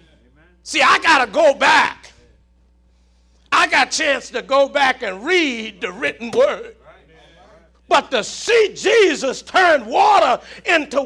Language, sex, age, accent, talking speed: English, male, 50-69, American, 135 wpm